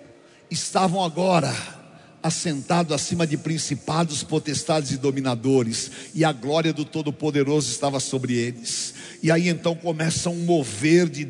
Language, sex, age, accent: Portuguese, male, 60-79, Brazilian